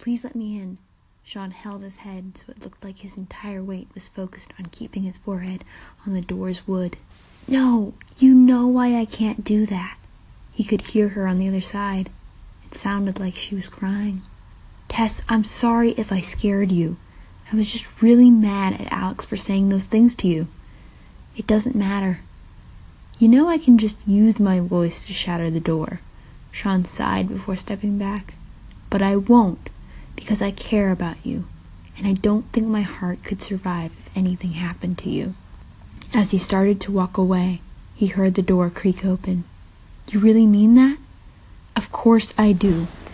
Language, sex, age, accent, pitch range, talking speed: English, female, 20-39, American, 180-210 Hz, 180 wpm